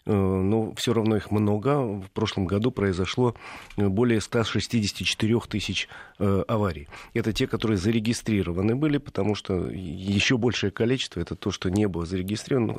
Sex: male